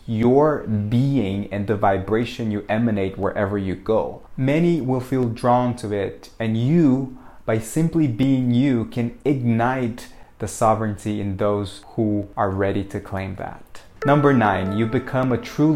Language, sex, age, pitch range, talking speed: English, male, 20-39, 105-125 Hz, 150 wpm